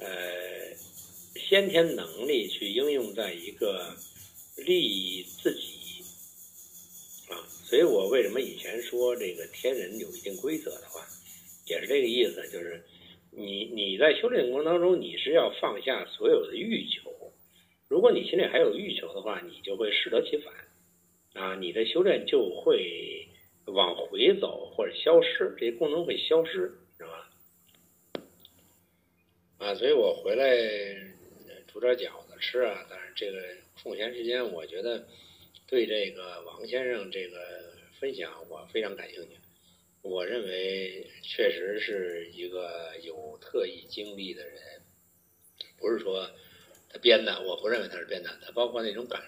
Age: 60-79